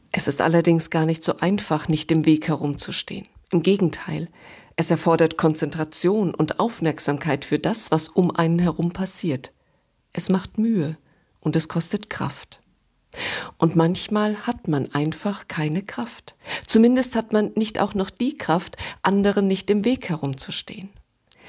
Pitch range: 160-200 Hz